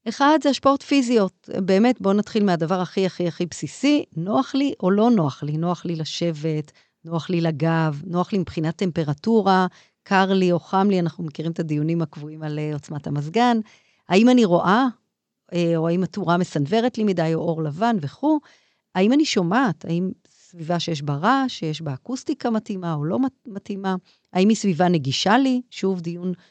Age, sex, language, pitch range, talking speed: 40-59, female, Hebrew, 165-230 Hz, 160 wpm